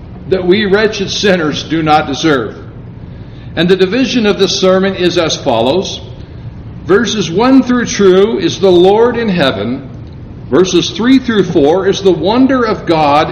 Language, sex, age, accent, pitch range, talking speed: English, male, 60-79, American, 150-220 Hz, 155 wpm